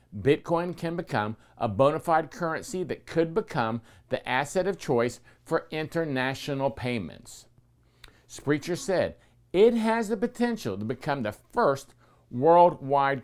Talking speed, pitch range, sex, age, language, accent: 125 wpm, 120-170 Hz, male, 50-69, English, American